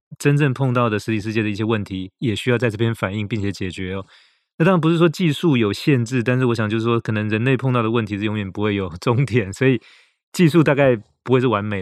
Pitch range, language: 110-140 Hz, Chinese